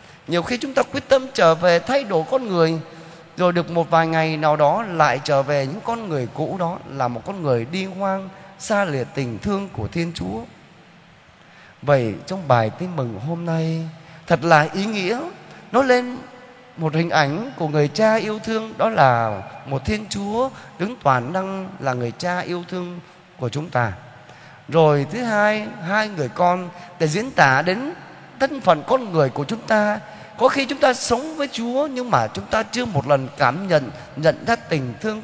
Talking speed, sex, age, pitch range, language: 195 wpm, male, 20-39, 150-220 Hz, Vietnamese